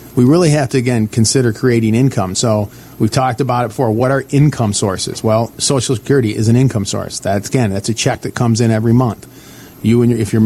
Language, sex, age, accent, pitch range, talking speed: English, male, 40-59, American, 110-135 Hz, 230 wpm